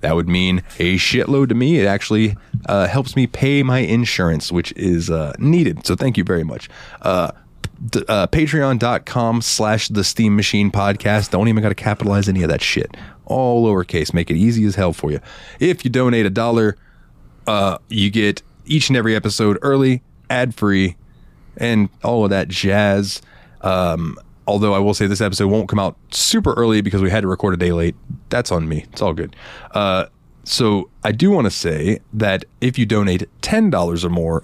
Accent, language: American, English